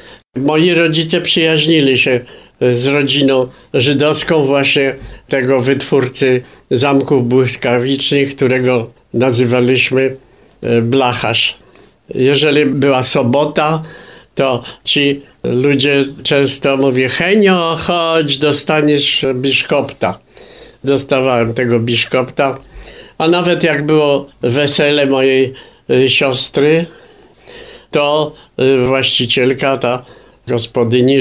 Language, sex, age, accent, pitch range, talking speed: Polish, male, 50-69, native, 130-145 Hz, 80 wpm